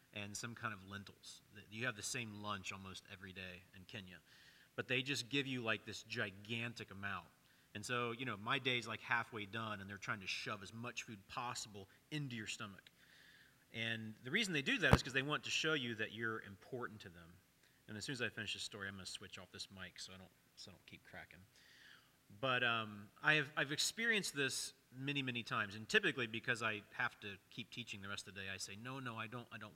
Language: English